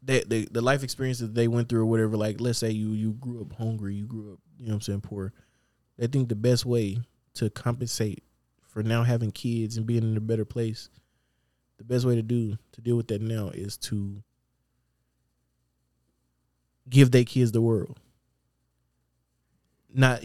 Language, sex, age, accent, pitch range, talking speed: English, male, 20-39, American, 100-130 Hz, 180 wpm